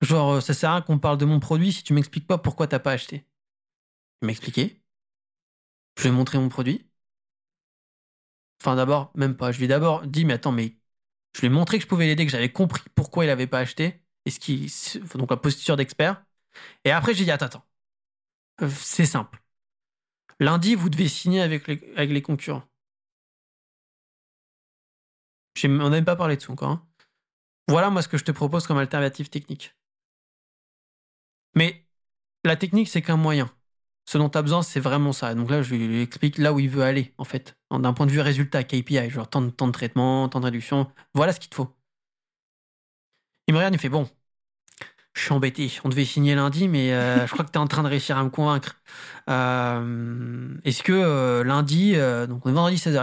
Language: French